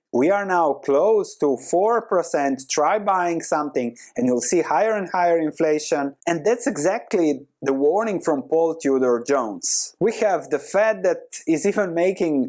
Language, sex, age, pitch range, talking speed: English, male, 30-49, 150-210 Hz, 160 wpm